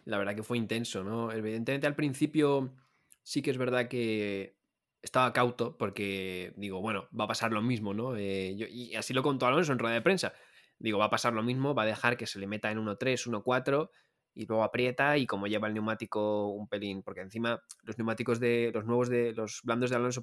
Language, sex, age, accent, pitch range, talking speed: Spanish, male, 20-39, Spanish, 105-125 Hz, 225 wpm